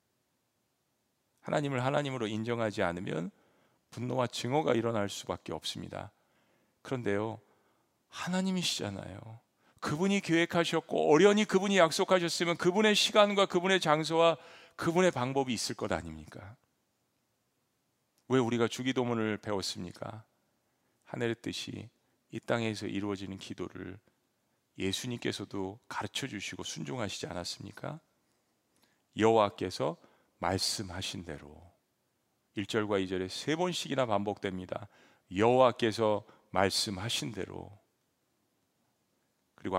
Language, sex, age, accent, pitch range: Korean, male, 40-59, native, 105-145 Hz